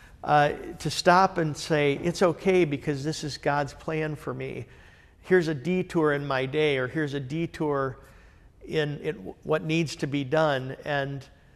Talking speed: 165 wpm